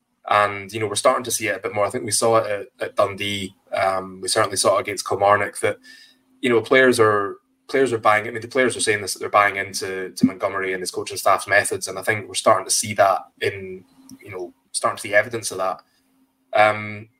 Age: 20-39